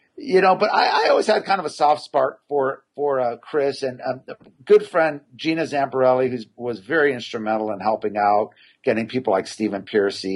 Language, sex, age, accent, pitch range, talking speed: English, male, 50-69, American, 105-145 Hz, 205 wpm